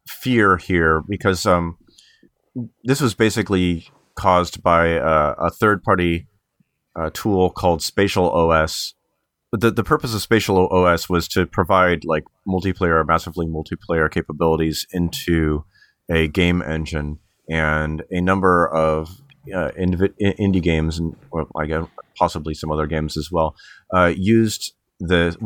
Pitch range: 80-95 Hz